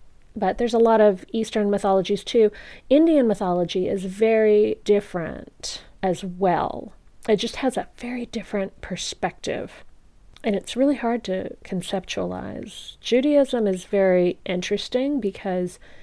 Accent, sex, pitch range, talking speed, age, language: American, female, 170-210 Hz, 125 wpm, 30-49, English